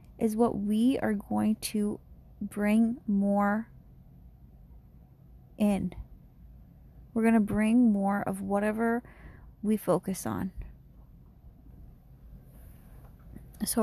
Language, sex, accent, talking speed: English, female, American, 80 wpm